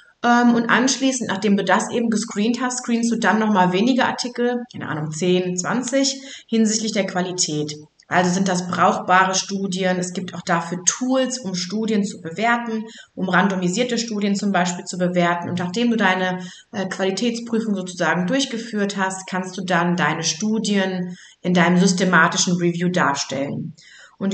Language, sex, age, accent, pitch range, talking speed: German, female, 30-49, German, 185-235 Hz, 150 wpm